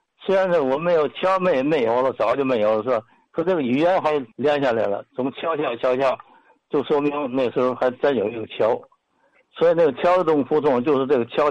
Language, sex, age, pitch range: Chinese, male, 60-79, 120-175 Hz